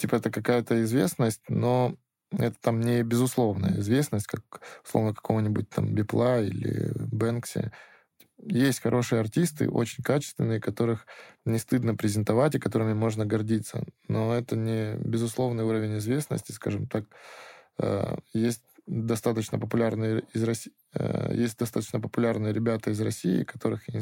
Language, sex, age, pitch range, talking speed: Russian, male, 20-39, 110-120 Hz, 130 wpm